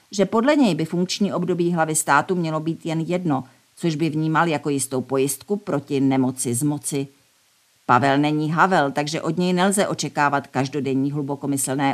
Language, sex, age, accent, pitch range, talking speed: Czech, female, 50-69, native, 140-170 Hz, 160 wpm